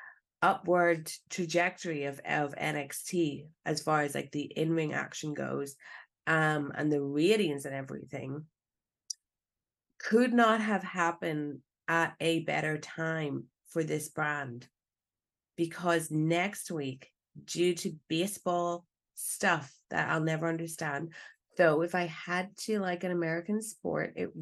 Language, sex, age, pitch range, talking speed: English, female, 30-49, 155-195 Hz, 125 wpm